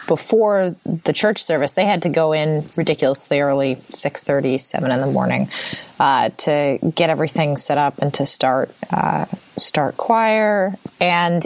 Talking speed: 150 wpm